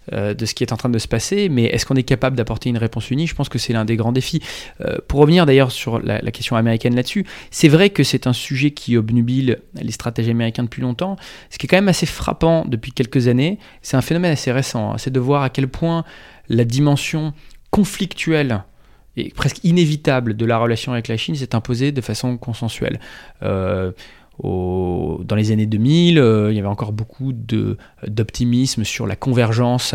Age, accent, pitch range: 20-39, French, 110-135 Hz